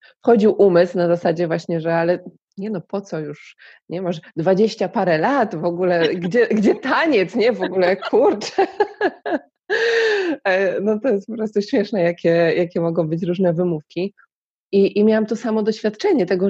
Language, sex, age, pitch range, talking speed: Polish, female, 20-39, 170-200 Hz, 165 wpm